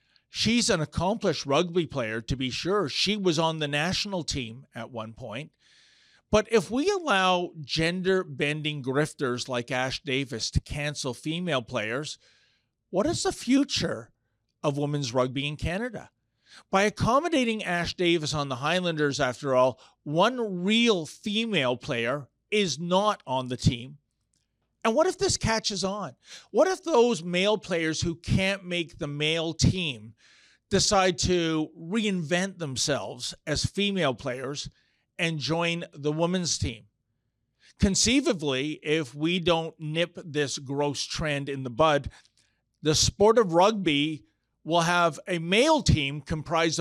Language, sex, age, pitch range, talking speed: English, male, 40-59, 140-190 Hz, 135 wpm